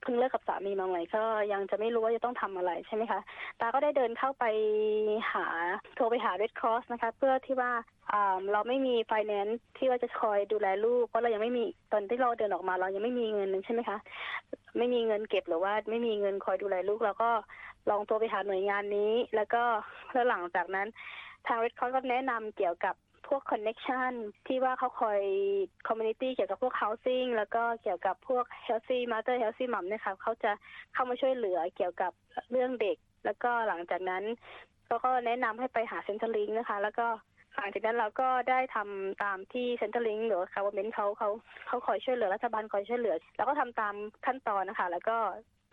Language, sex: Thai, female